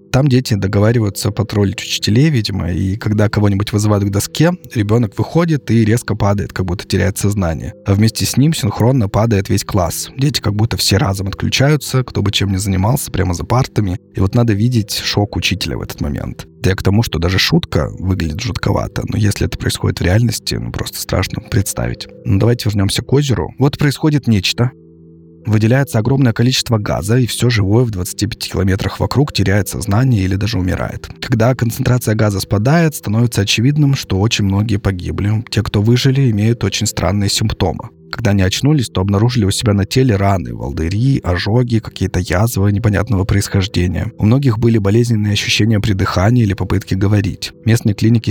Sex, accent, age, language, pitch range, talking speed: male, native, 20-39, Russian, 100-120 Hz, 175 wpm